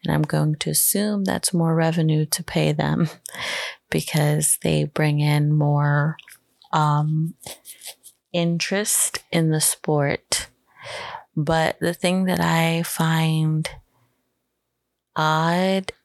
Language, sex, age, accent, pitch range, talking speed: English, female, 30-49, American, 150-175 Hz, 105 wpm